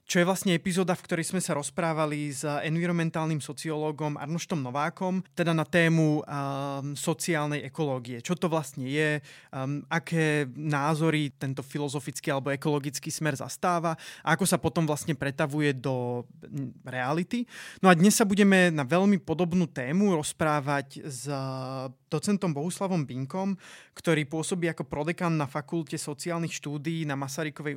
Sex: male